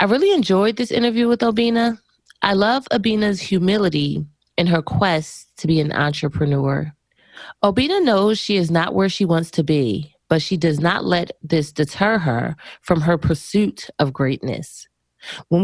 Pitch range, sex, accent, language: 150-205 Hz, female, American, English